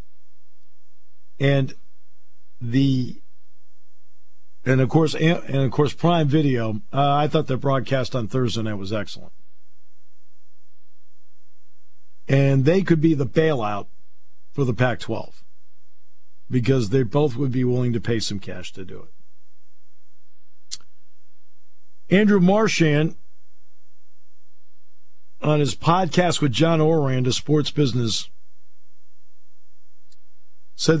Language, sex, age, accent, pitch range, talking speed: English, male, 50-69, American, 110-160 Hz, 105 wpm